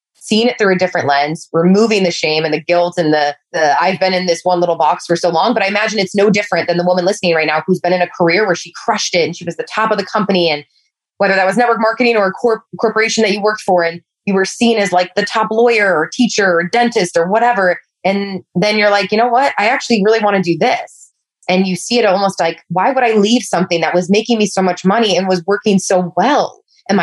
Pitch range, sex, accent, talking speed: 170-215 Hz, female, American, 265 wpm